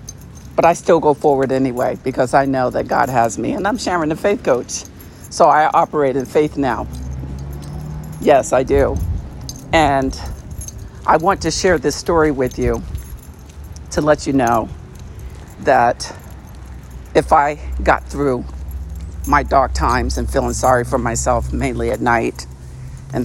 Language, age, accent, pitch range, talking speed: English, 50-69, American, 105-160 Hz, 150 wpm